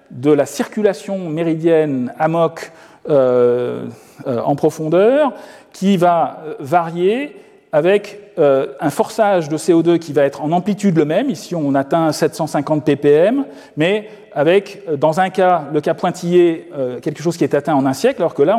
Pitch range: 145-200 Hz